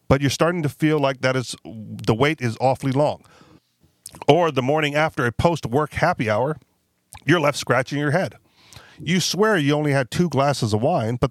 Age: 40-59